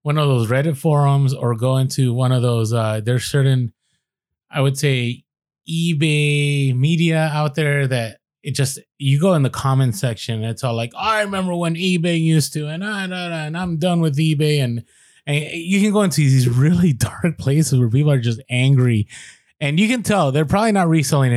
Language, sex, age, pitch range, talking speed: English, male, 20-39, 130-170 Hz, 200 wpm